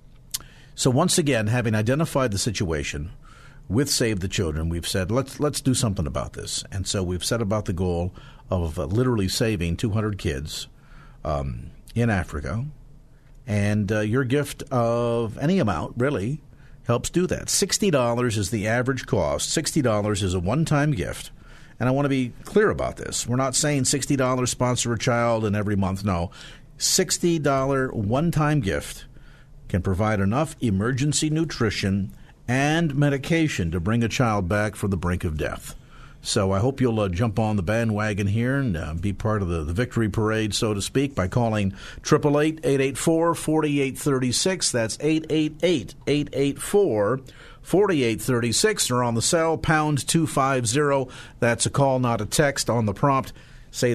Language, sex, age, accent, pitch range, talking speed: English, male, 50-69, American, 105-140 Hz, 160 wpm